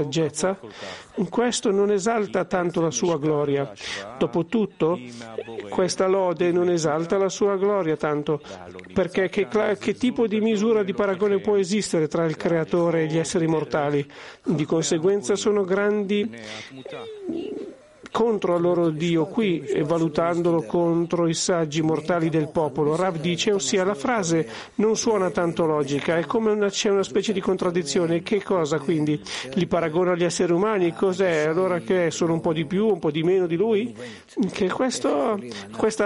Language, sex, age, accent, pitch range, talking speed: Italian, male, 50-69, native, 165-205 Hz, 150 wpm